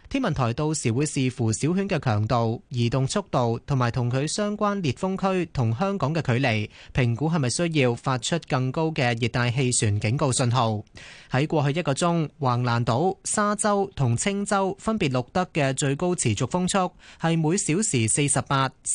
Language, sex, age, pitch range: Chinese, male, 20-39, 120-170 Hz